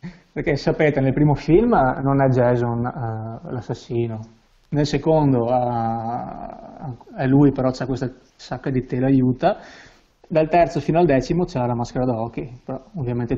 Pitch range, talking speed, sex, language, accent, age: 125-145 Hz, 150 wpm, male, Italian, native, 20-39